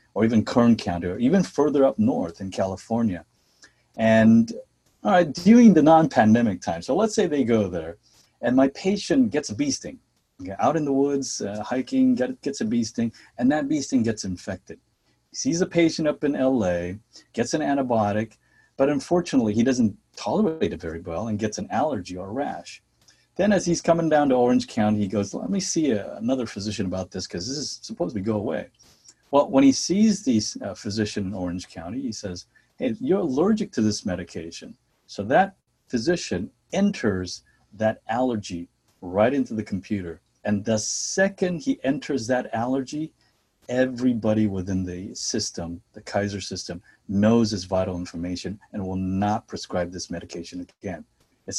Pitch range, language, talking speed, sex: 100-155 Hz, English, 175 wpm, male